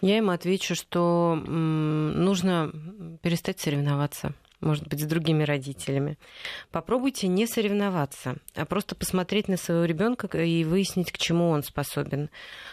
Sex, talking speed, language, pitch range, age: female, 125 wpm, Russian, 155-195 Hz, 30-49